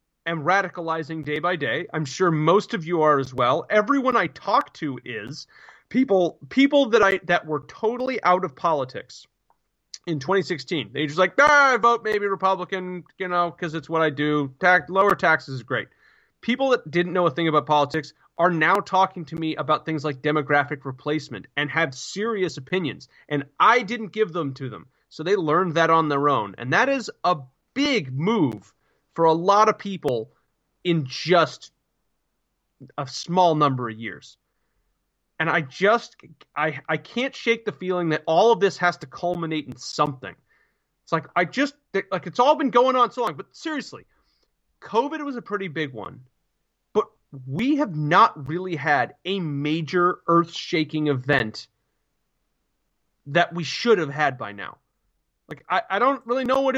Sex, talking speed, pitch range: male, 175 wpm, 150-205 Hz